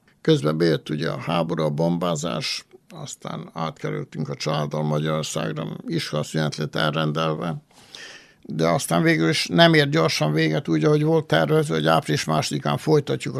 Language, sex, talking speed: Hungarian, male, 145 wpm